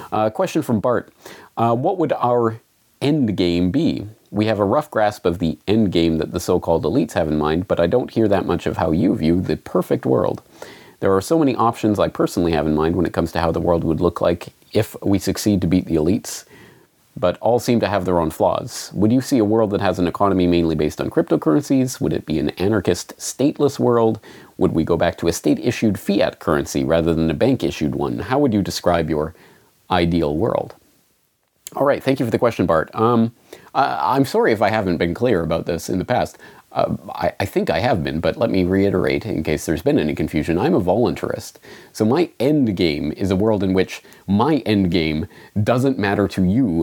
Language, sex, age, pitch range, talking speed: English, male, 30-49, 85-110 Hz, 220 wpm